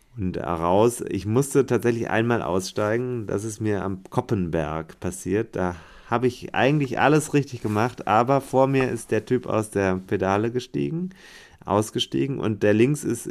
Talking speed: 160 wpm